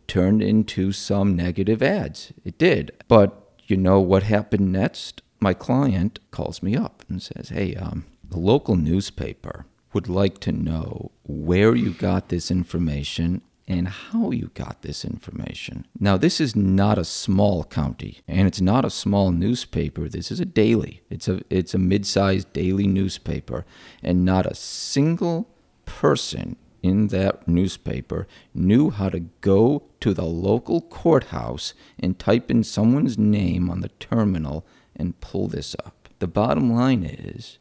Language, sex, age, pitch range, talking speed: English, male, 40-59, 90-105 Hz, 155 wpm